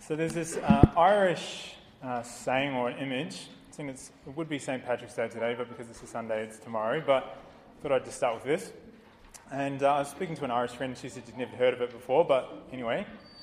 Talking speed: 230 wpm